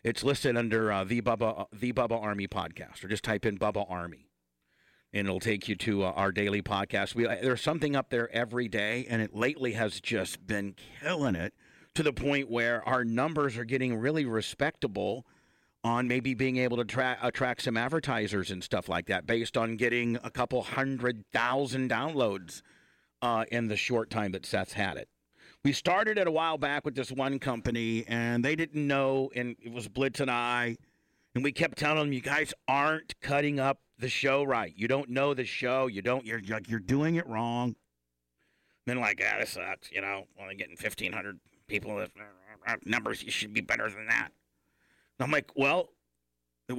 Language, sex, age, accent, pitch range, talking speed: English, male, 50-69, American, 105-135 Hz, 195 wpm